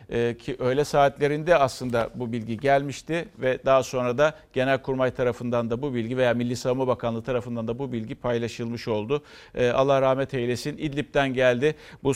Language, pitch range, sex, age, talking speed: Turkish, 120-160 Hz, male, 50-69, 155 wpm